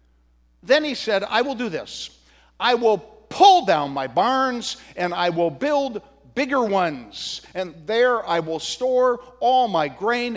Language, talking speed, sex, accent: English, 155 wpm, male, American